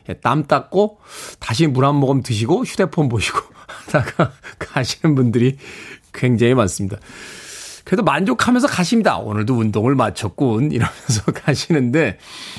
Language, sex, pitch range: Korean, male, 120-180 Hz